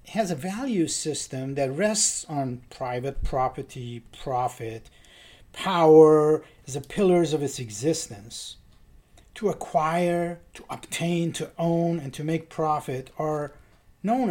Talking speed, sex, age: 120 wpm, male, 50-69